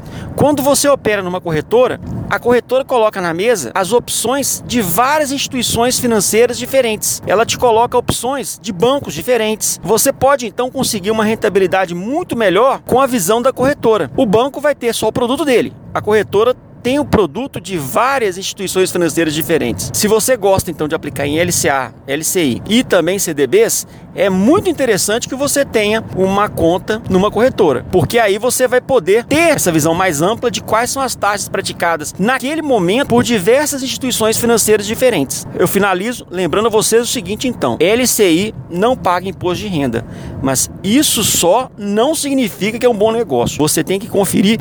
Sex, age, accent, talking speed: male, 40-59, Brazilian, 170 wpm